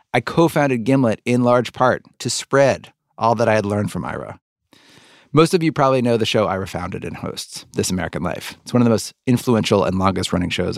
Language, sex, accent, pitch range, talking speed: English, male, American, 100-130 Hz, 210 wpm